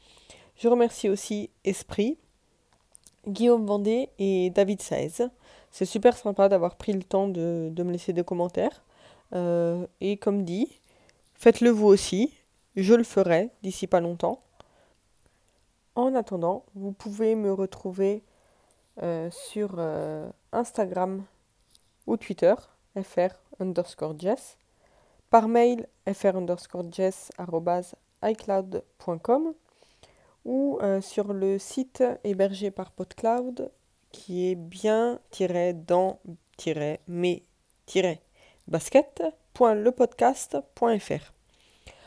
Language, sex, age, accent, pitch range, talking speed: French, female, 20-39, French, 180-225 Hz, 90 wpm